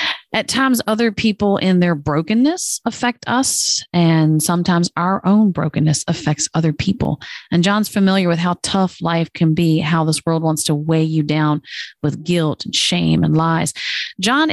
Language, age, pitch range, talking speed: English, 40-59, 155-190 Hz, 170 wpm